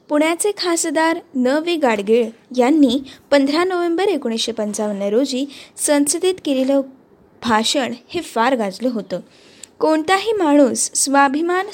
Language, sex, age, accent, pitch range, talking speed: Marathi, female, 20-39, native, 225-320 Hz, 105 wpm